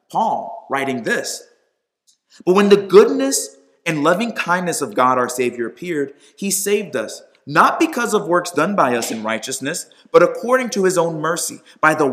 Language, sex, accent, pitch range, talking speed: English, male, American, 155-230 Hz, 175 wpm